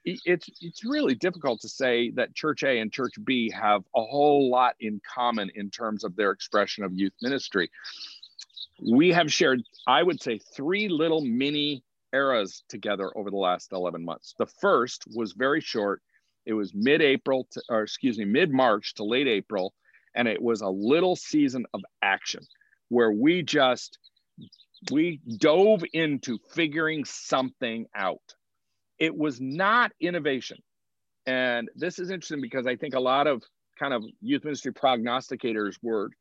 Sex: male